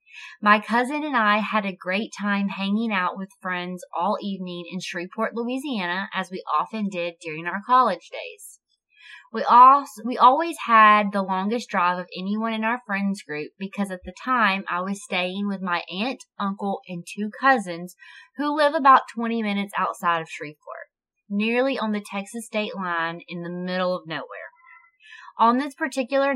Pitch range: 180-230 Hz